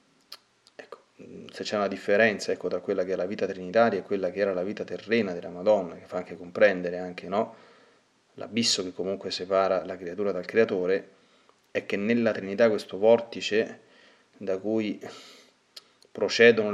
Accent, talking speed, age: native, 160 wpm, 30-49